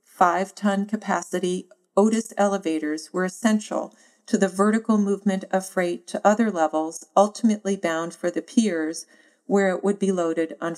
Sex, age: female, 40-59